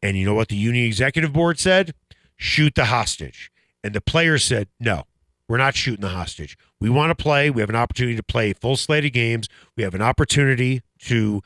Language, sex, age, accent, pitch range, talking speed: English, male, 40-59, American, 105-165 Hz, 220 wpm